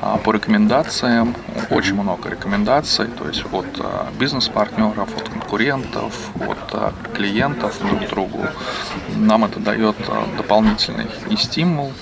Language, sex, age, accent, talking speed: Russian, male, 20-39, native, 100 wpm